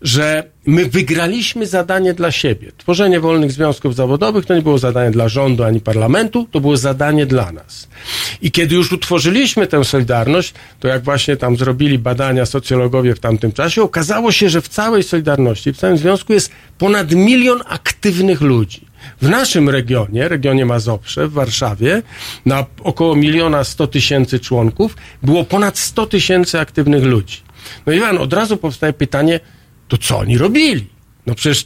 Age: 50-69